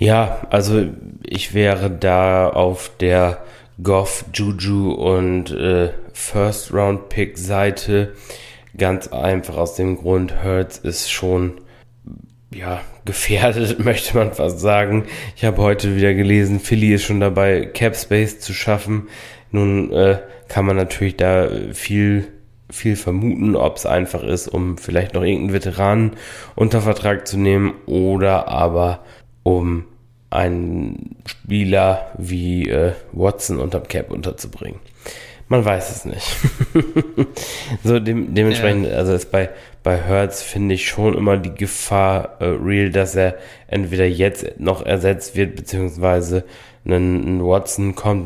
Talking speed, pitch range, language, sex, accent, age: 125 wpm, 90-105 Hz, German, male, German, 20-39